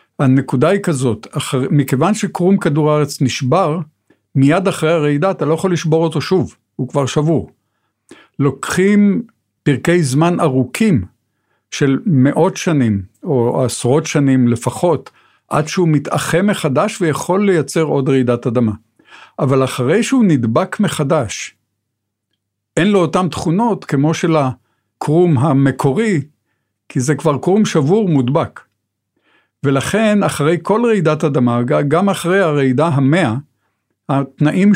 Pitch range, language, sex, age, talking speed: 130-180 Hz, Hebrew, male, 50-69, 120 wpm